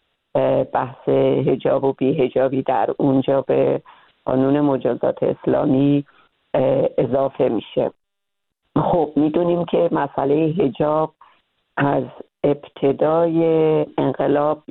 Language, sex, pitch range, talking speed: Persian, female, 135-150 Hz, 80 wpm